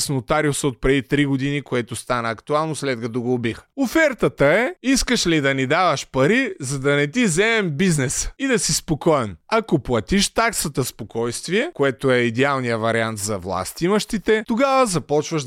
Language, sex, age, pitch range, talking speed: Bulgarian, male, 20-39, 130-200 Hz, 165 wpm